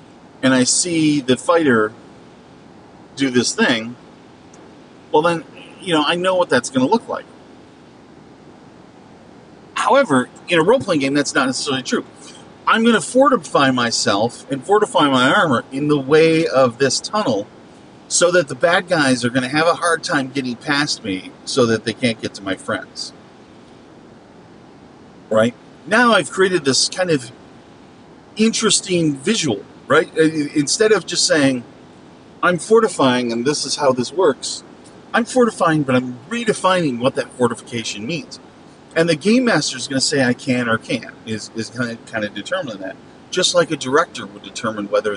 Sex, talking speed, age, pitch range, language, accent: male, 160 wpm, 40-59, 130-195 Hz, English, American